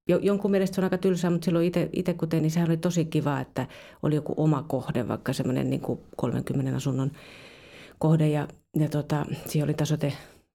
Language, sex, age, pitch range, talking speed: Finnish, female, 30-49, 140-165 Hz, 165 wpm